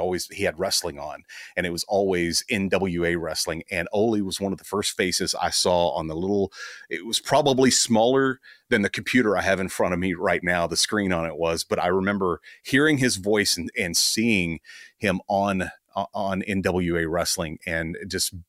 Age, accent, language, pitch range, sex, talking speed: 30-49, American, English, 95-115 Hz, male, 195 wpm